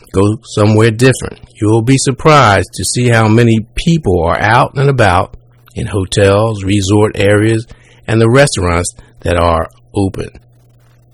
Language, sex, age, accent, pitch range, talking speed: English, male, 50-69, American, 100-120 Hz, 140 wpm